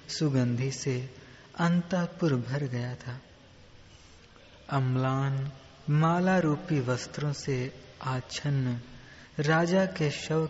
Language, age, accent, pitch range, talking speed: Hindi, 20-39, native, 125-160 Hz, 80 wpm